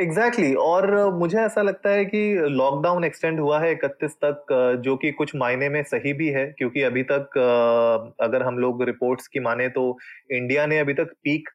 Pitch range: 125-165 Hz